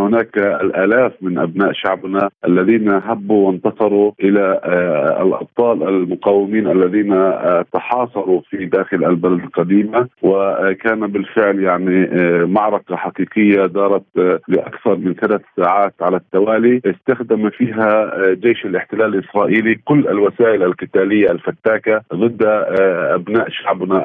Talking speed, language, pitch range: 100 wpm, Arabic, 95-115 Hz